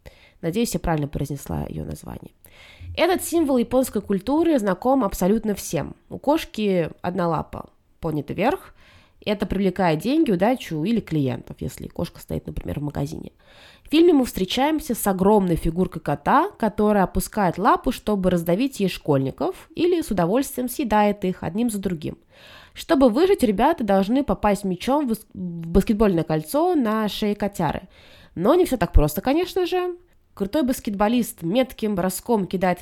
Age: 20-39